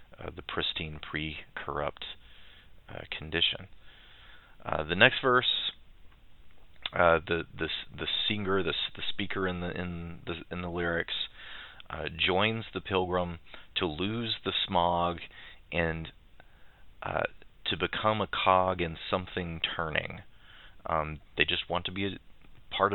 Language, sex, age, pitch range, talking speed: English, male, 30-49, 80-95 Hz, 130 wpm